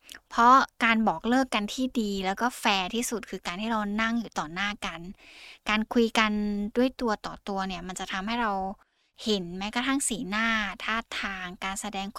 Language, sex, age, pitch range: Thai, female, 10-29, 195-230 Hz